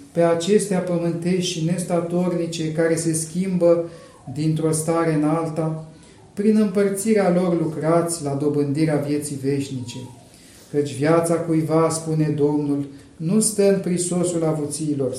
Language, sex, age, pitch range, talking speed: Romanian, male, 40-59, 155-190 Hz, 120 wpm